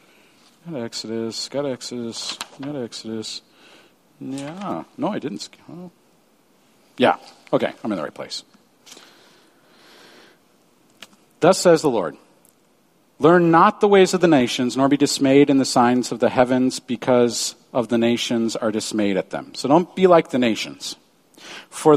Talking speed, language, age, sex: 140 wpm, English, 50-69, male